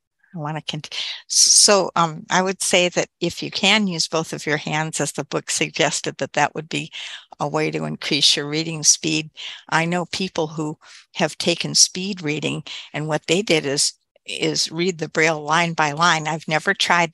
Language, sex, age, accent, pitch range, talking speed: English, female, 60-79, American, 155-175 Hz, 195 wpm